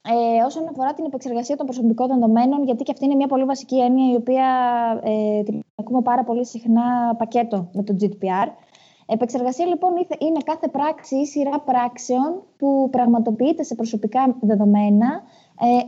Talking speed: 155 wpm